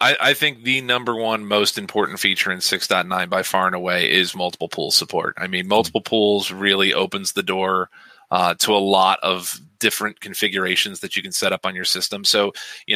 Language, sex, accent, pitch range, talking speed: English, male, American, 95-110 Hz, 200 wpm